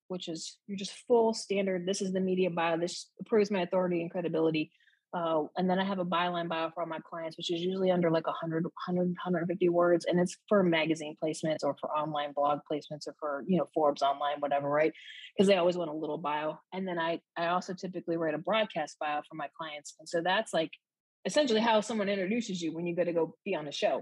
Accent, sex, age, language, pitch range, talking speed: American, female, 30-49, English, 160-190 Hz, 235 wpm